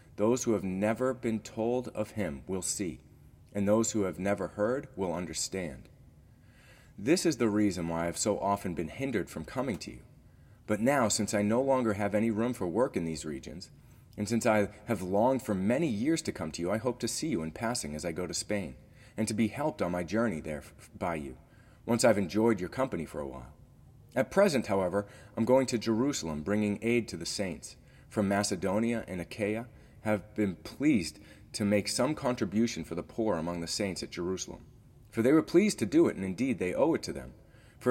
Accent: American